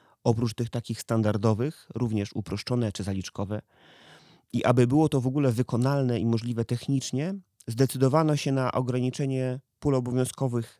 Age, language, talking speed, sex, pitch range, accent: 30-49, Polish, 135 wpm, male, 110-135 Hz, native